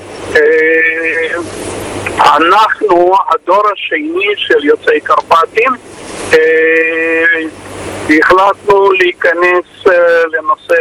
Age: 50-69